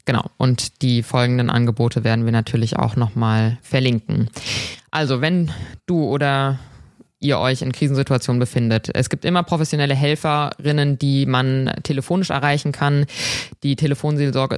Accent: German